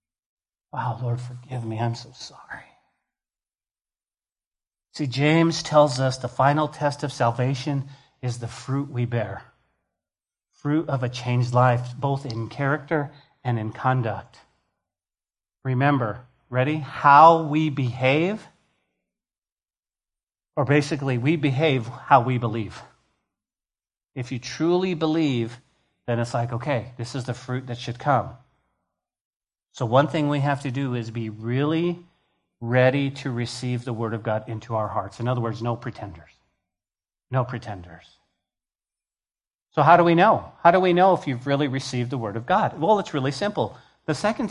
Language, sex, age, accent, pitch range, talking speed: English, male, 40-59, American, 120-160 Hz, 145 wpm